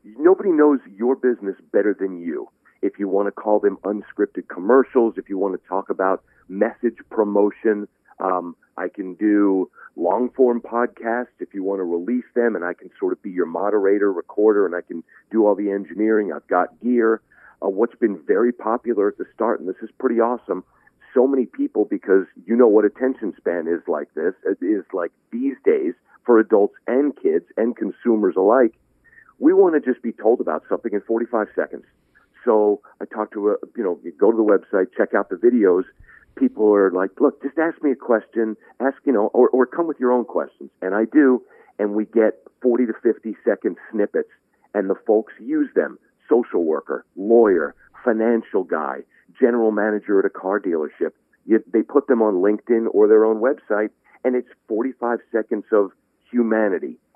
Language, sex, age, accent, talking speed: English, male, 50-69, American, 185 wpm